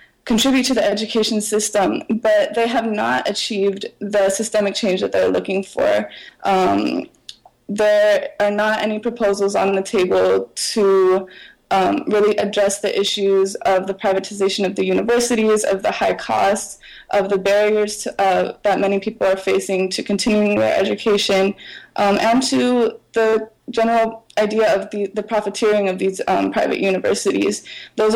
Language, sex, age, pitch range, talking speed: English, female, 20-39, 195-220 Hz, 150 wpm